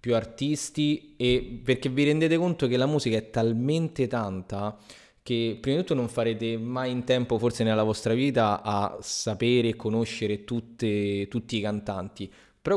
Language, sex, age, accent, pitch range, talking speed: Italian, male, 20-39, native, 110-135 Hz, 165 wpm